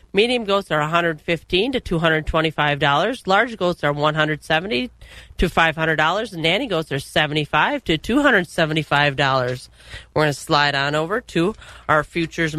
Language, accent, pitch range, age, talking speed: English, American, 155-195 Hz, 30-49, 145 wpm